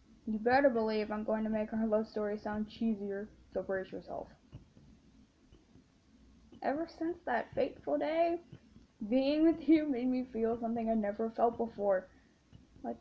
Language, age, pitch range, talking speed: English, 10-29, 215-275 Hz, 150 wpm